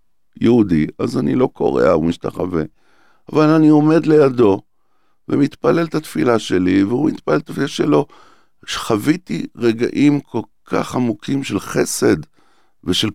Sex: male